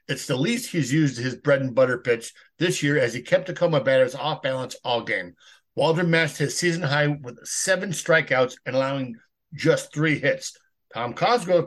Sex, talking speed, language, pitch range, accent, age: male, 185 wpm, English, 135-185 Hz, American, 50-69